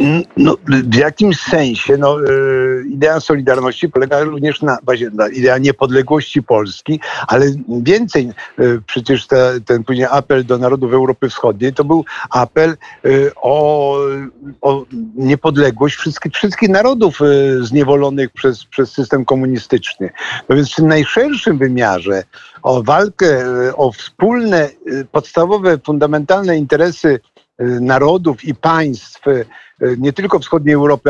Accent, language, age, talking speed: native, Polish, 50-69, 115 wpm